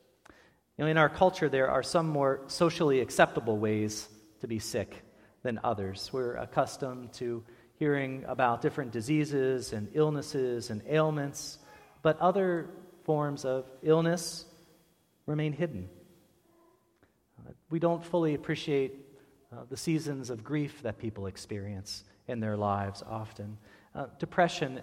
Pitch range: 110-150 Hz